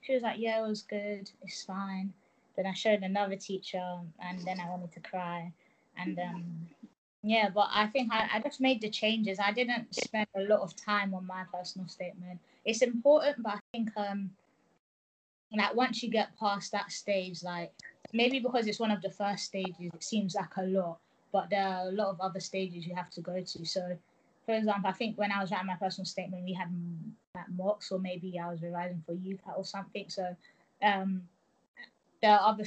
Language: English